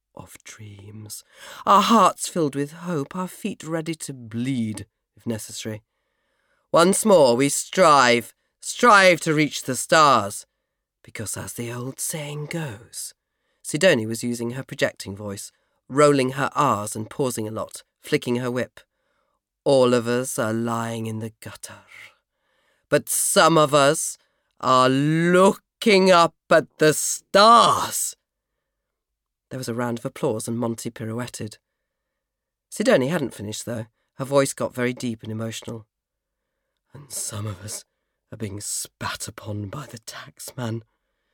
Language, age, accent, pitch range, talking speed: English, 40-59, British, 115-165 Hz, 135 wpm